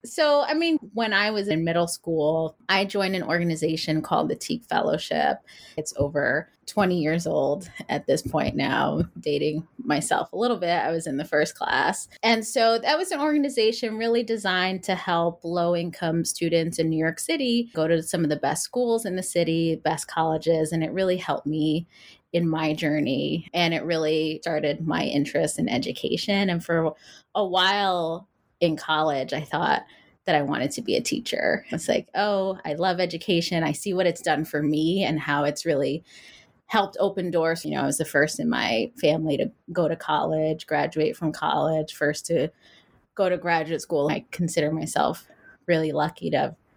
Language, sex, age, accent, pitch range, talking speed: English, female, 20-39, American, 155-190 Hz, 185 wpm